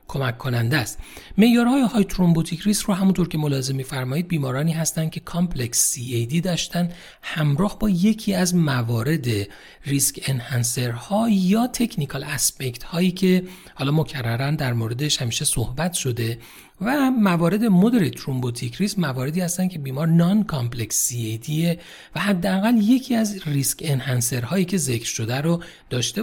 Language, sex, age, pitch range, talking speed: Persian, male, 40-59, 130-190 Hz, 140 wpm